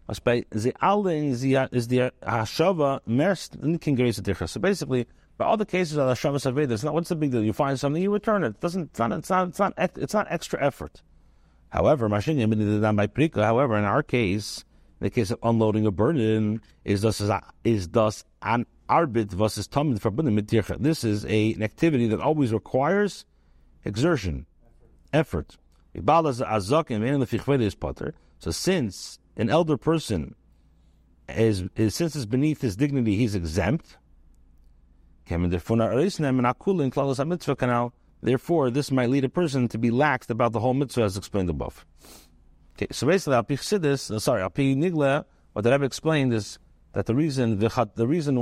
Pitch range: 105-150 Hz